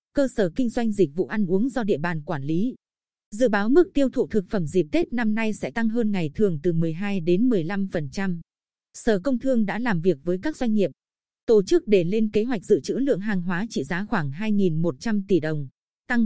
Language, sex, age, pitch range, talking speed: Vietnamese, female, 20-39, 185-240 Hz, 225 wpm